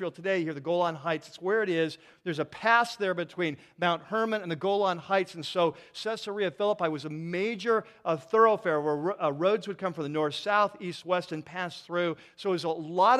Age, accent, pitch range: 40-59, American, 155-205 Hz